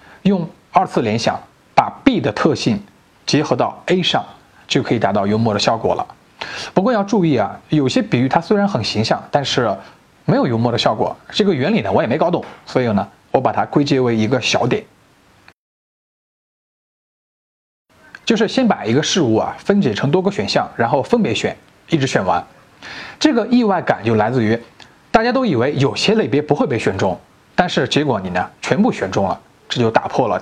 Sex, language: male, Chinese